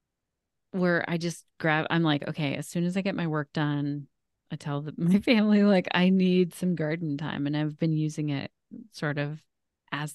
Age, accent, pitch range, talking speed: 30-49, American, 155-195 Hz, 195 wpm